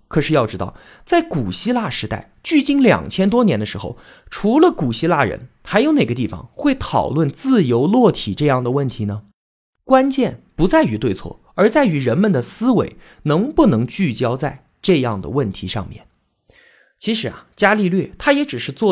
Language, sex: Chinese, male